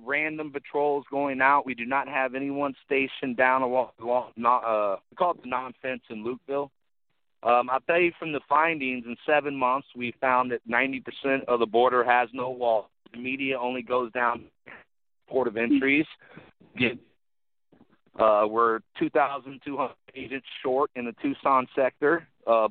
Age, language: 40-59, English